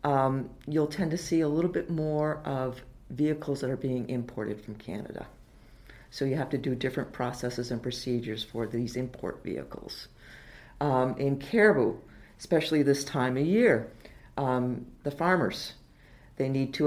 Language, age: English, 50-69